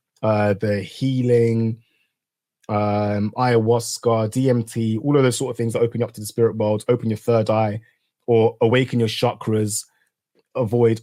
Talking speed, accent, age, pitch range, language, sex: 160 wpm, British, 20-39, 110-120 Hz, English, male